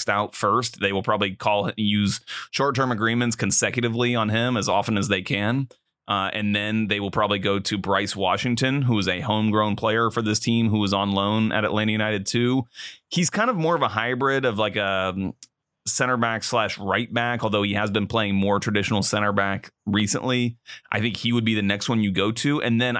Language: English